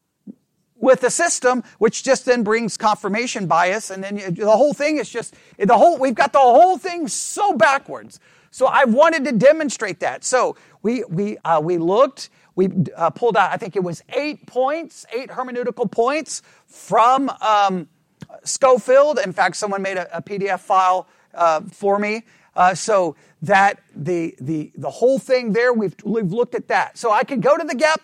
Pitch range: 195-270 Hz